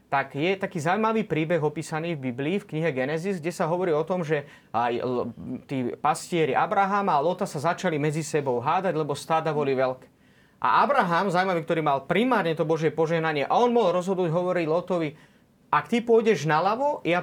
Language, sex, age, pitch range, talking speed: Slovak, male, 30-49, 150-190 Hz, 180 wpm